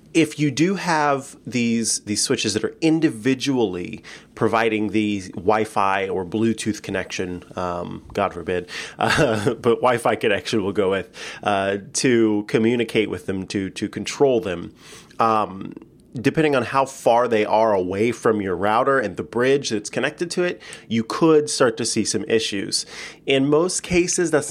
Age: 30-49